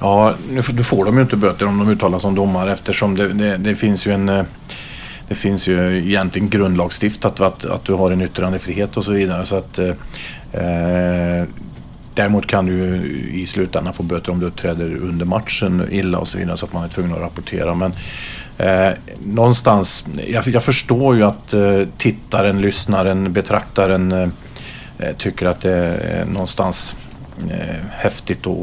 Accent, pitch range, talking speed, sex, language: Swedish, 90-105 Hz, 165 wpm, male, English